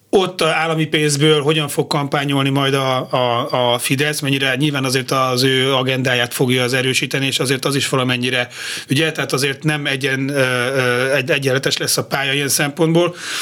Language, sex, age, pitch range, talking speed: Hungarian, male, 30-49, 130-160 Hz, 160 wpm